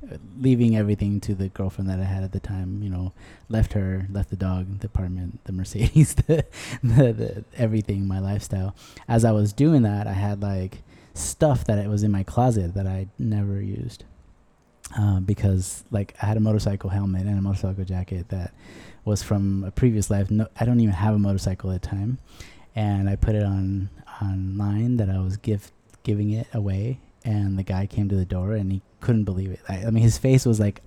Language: English